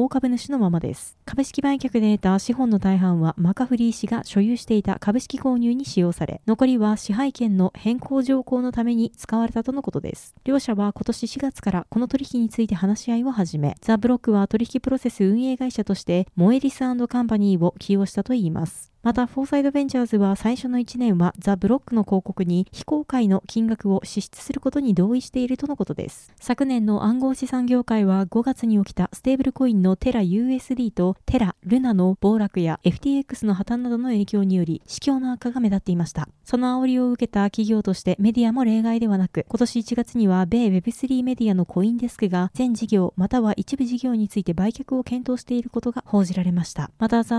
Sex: female